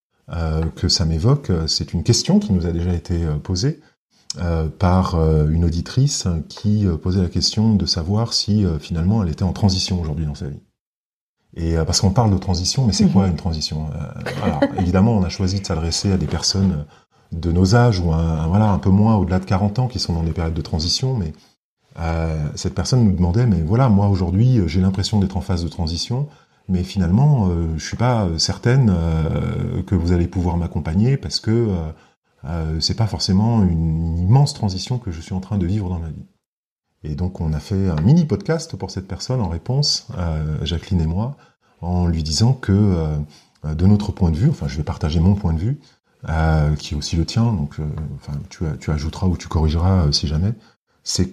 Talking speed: 215 wpm